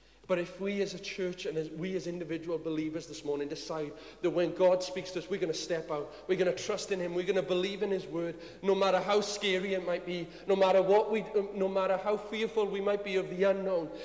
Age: 40-59